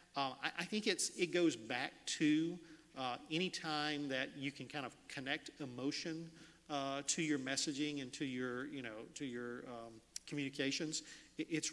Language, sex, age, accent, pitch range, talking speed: English, male, 40-59, American, 135-160 Hz, 175 wpm